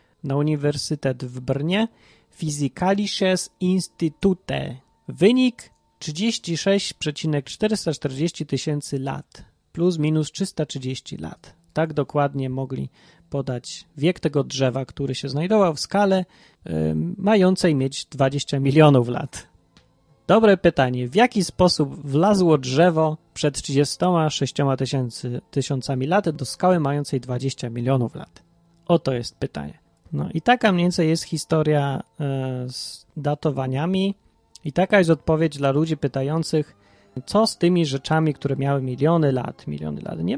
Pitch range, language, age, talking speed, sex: 135-170 Hz, Polish, 30-49, 115 wpm, male